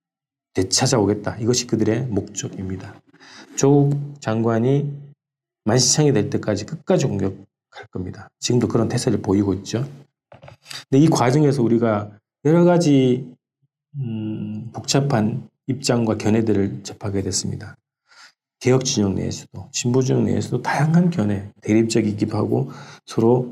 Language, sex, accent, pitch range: Korean, male, native, 105-140 Hz